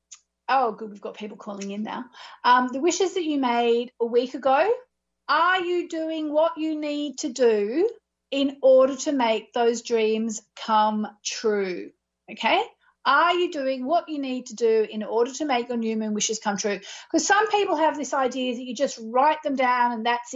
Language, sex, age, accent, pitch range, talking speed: English, female, 40-59, Australian, 230-320 Hz, 195 wpm